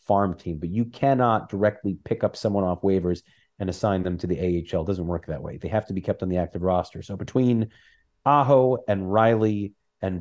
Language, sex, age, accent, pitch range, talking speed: English, male, 30-49, American, 85-105 Hz, 215 wpm